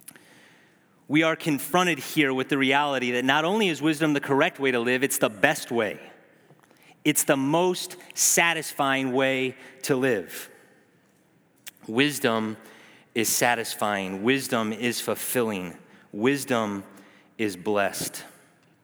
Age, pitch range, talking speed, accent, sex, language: 30-49, 120-150 Hz, 120 wpm, American, male, English